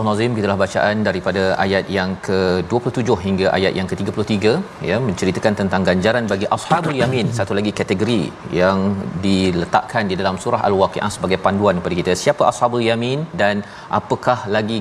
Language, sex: Malayalam, male